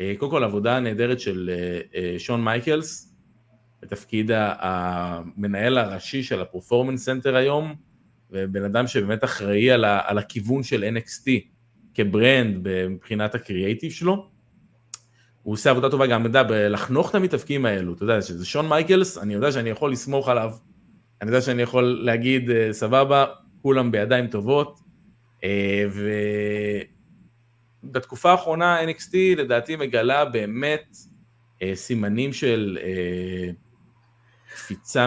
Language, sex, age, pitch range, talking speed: Hebrew, male, 30-49, 105-135 Hz, 115 wpm